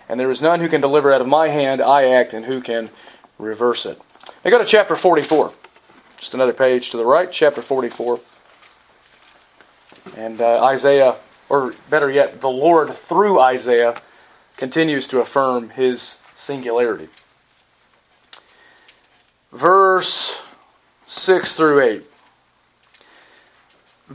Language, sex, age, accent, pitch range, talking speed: English, male, 30-49, American, 135-190 Hz, 125 wpm